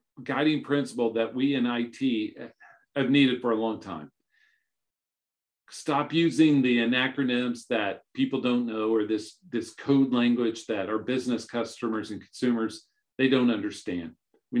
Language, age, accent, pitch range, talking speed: English, 50-69, American, 115-140 Hz, 145 wpm